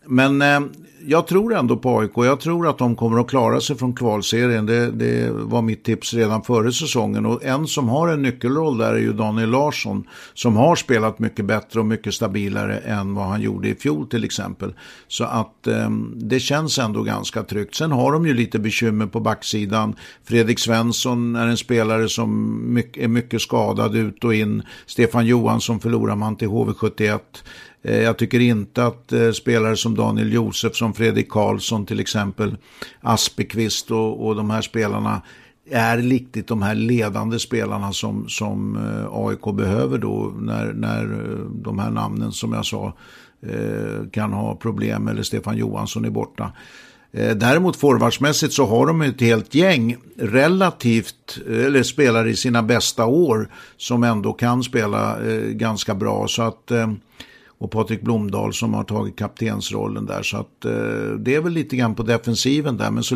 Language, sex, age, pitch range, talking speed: English, male, 60-79, 110-120 Hz, 165 wpm